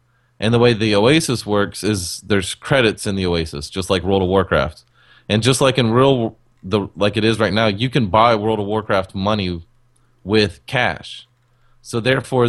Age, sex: 30-49, male